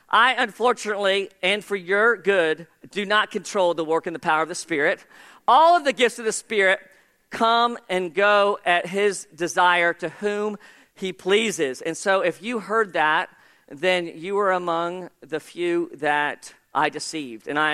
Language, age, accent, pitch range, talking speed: English, 40-59, American, 180-235 Hz, 175 wpm